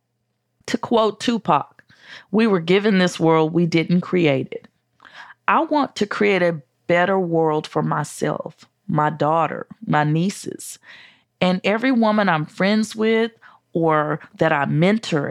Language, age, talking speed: English, 40-59, 135 wpm